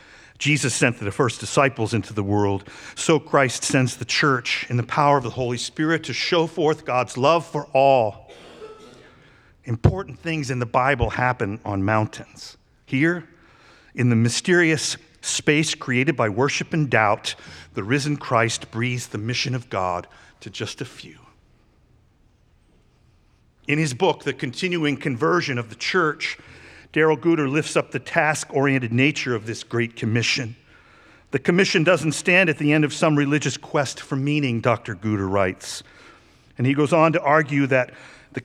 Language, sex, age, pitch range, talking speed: English, male, 50-69, 120-155 Hz, 160 wpm